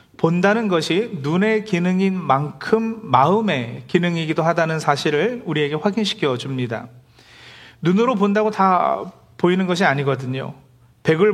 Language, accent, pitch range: Korean, native, 120-190 Hz